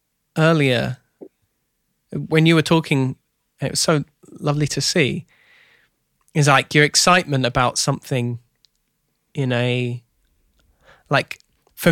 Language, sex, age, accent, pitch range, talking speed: English, male, 20-39, British, 125-155 Hz, 105 wpm